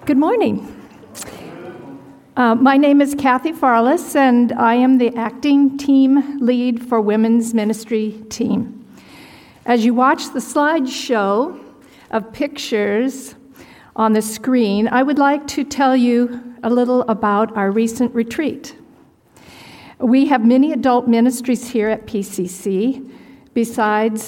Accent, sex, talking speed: American, female, 125 wpm